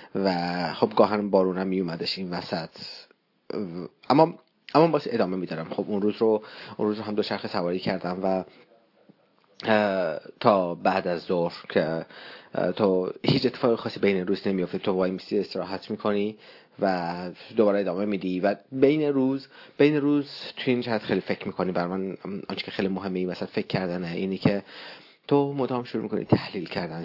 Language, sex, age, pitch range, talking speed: Persian, male, 30-49, 90-110 Hz, 165 wpm